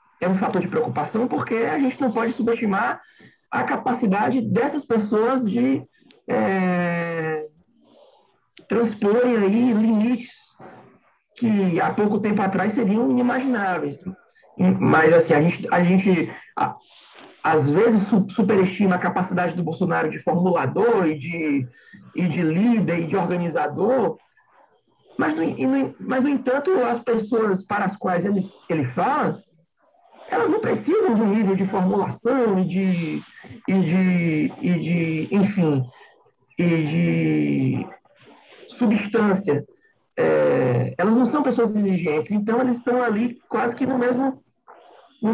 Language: Portuguese